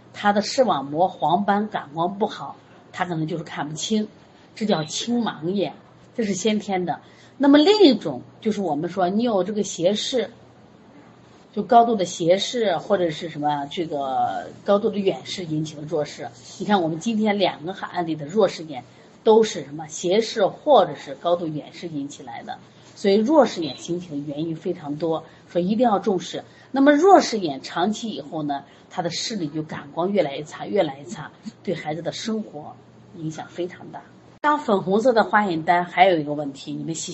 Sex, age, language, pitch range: female, 30-49, Chinese, 160-215 Hz